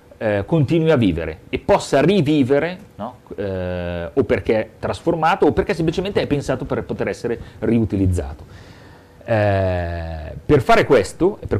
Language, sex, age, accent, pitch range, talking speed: Italian, male, 40-59, native, 105-155 Hz, 140 wpm